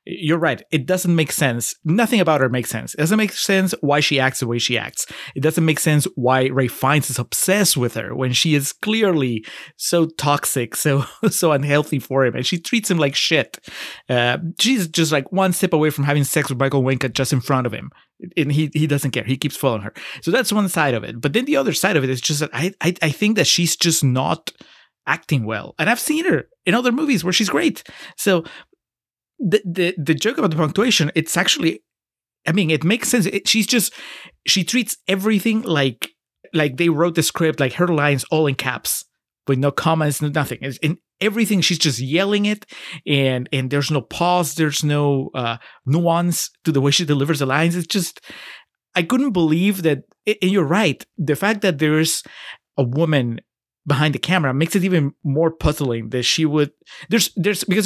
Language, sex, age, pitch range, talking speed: English, male, 30-49, 140-185 Hz, 210 wpm